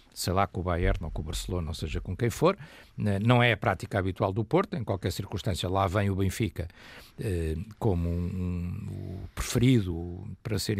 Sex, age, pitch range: male, 60-79, 90-115 Hz